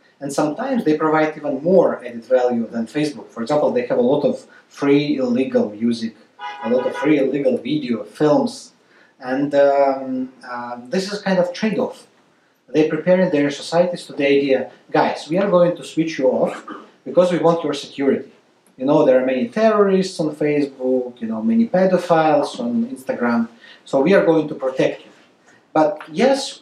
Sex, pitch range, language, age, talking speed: male, 135-185 Hz, English, 30-49, 175 wpm